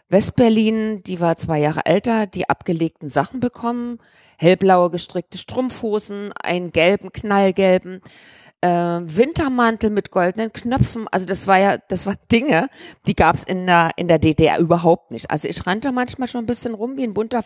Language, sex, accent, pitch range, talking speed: German, female, German, 175-235 Hz, 170 wpm